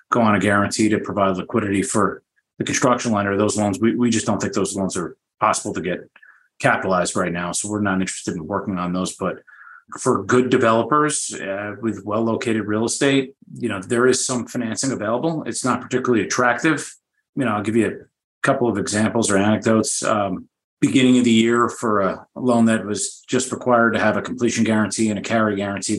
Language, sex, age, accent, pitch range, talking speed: English, male, 30-49, American, 105-125 Hz, 205 wpm